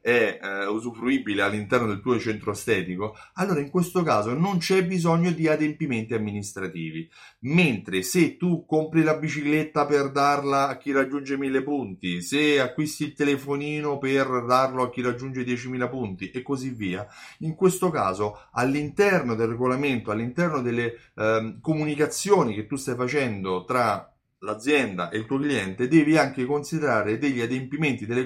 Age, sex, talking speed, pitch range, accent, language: 30-49, male, 150 wpm, 110-155 Hz, native, Italian